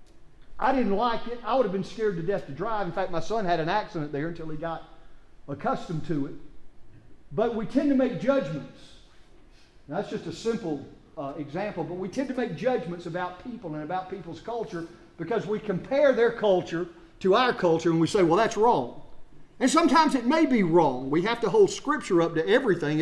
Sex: male